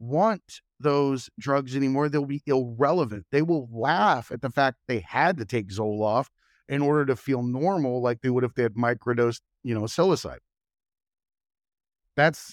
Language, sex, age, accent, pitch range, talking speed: English, male, 40-59, American, 115-145 Hz, 165 wpm